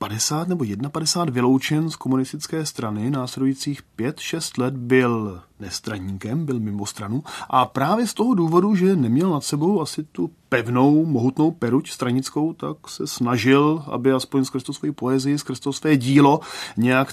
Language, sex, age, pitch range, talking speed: Czech, male, 30-49, 110-140 Hz, 145 wpm